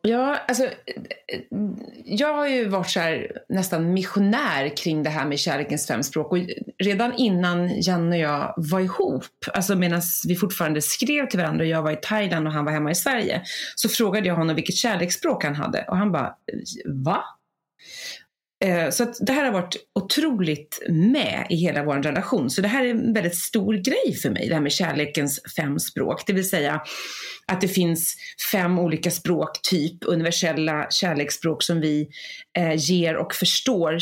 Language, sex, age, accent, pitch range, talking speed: English, female, 30-49, Swedish, 160-215 Hz, 175 wpm